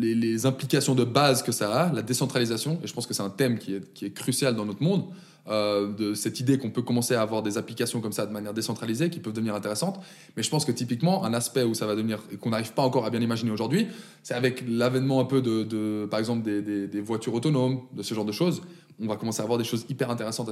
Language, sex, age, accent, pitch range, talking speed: French, male, 20-39, French, 115-150 Hz, 270 wpm